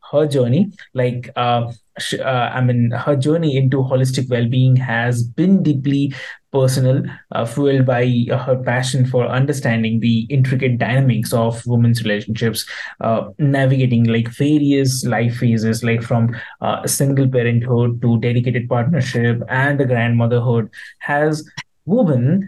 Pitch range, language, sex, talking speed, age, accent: 120-145 Hz, English, male, 135 wpm, 20-39, Indian